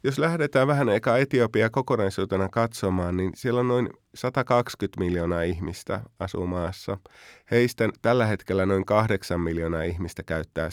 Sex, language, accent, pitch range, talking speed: male, Finnish, native, 90-115 Hz, 130 wpm